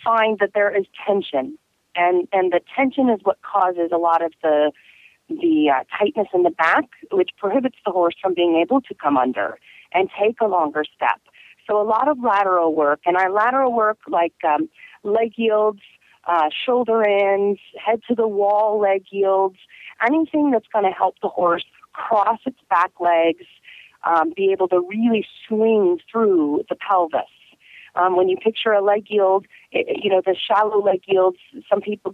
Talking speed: 180 wpm